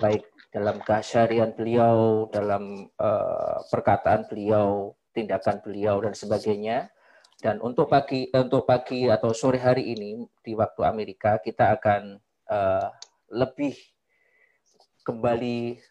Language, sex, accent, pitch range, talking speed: Indonesian, male, native, 105-125 Hz, 110 wpm